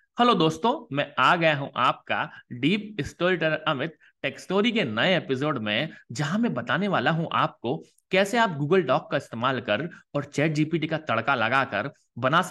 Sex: male